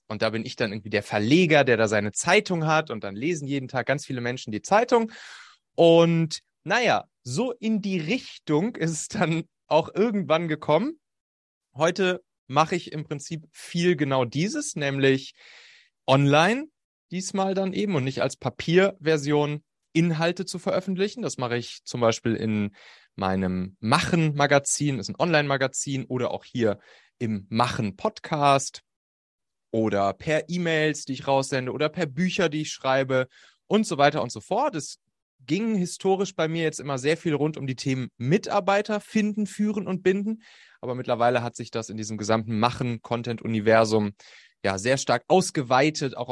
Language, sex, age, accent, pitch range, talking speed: German, male, 30-49, German, 125-175 Hz, 160 wpm